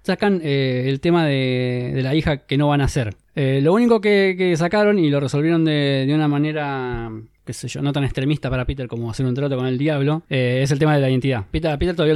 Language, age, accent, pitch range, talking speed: Spanish, 20-39, Argentinian, 130-175 Hz, 250 wpm